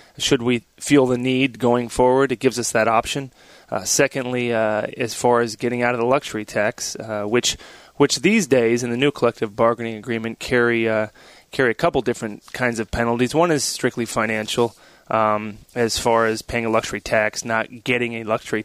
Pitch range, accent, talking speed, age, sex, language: 115-130 Hz, American, 195 wpm, 20-39, male, English